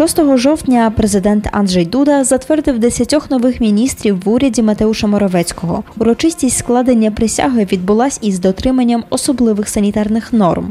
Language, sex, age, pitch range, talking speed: Polish, female, 20-39, 210-265 Hz, 125 wpm